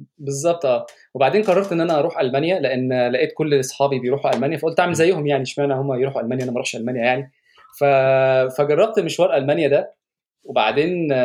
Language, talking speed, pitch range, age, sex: Arabic, 165 wpm, 135-180 Hz, 20-39, male